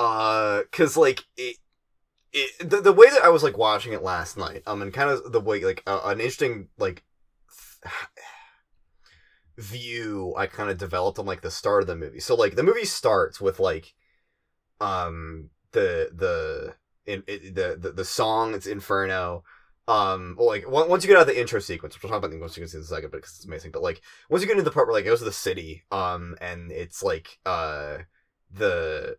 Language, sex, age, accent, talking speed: English, male, 20-39, American, 210 wpm